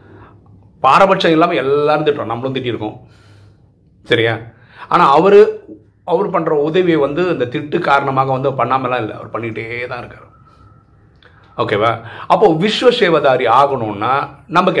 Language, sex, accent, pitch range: Tamil, male, native, 110-155 Hz